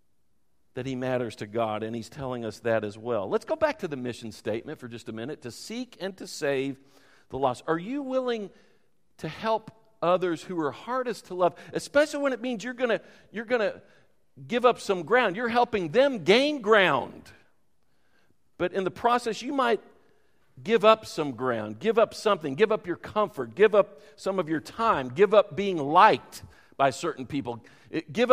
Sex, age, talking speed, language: male, 50-69, 190 wpm, English